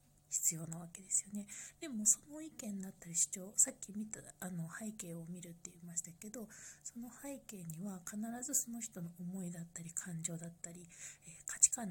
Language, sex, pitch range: Japanese, female, 165-210 Hz